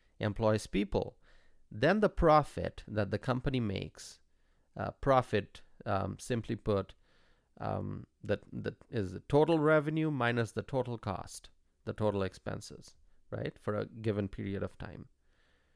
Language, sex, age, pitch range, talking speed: English, male, 30-49, 85-135 Hz, 135 wpm